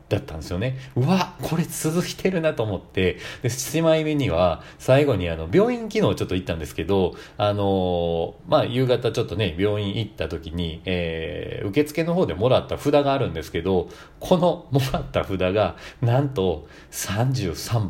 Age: 40-59